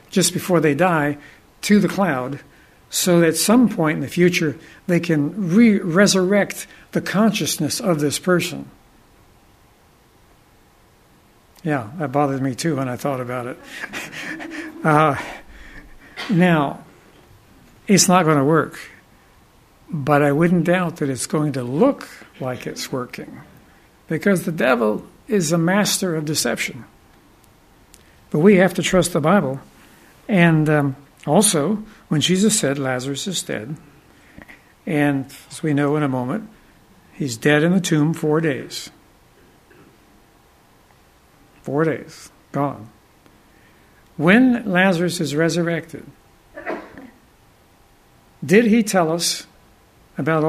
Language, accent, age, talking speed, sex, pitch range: English, American, 60-79, 120 wpm, male, 145-190 Hz